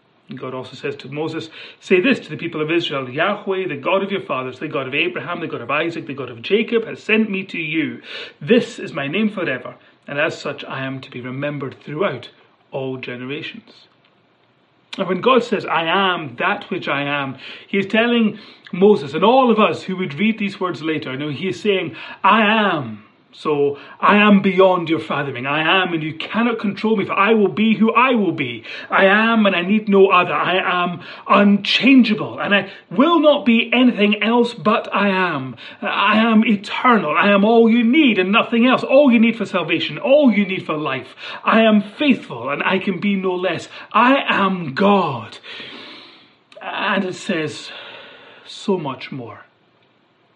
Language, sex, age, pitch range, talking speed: English, male, 30-49, 160-220 Hz, 195 wpm